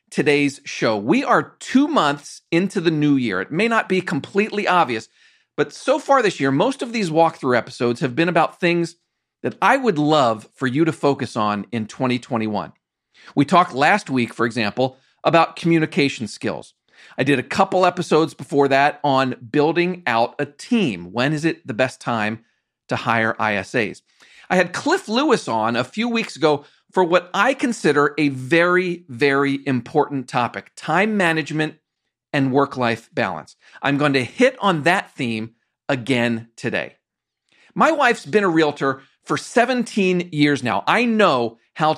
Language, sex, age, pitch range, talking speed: English, male, 40-59, 125-175 Hz, 165 wpm